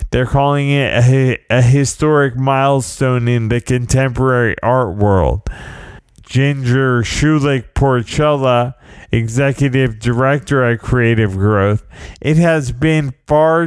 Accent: American